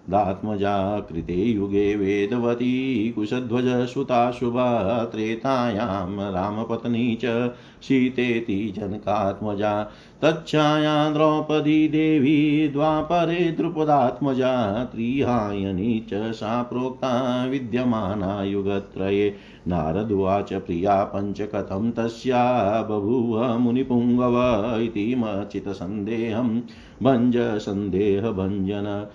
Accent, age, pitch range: native, 50-69, 100-130 Hz